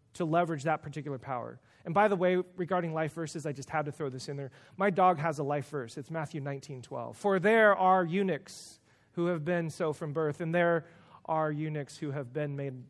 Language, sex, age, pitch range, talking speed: English, male, 30-49, 135-175 Hz, 225 wpm